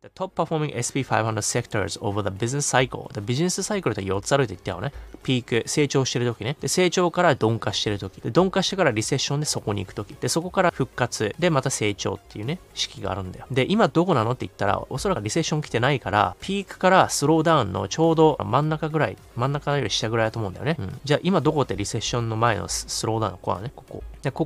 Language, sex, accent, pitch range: Japanese, male, native, 110-155 Hz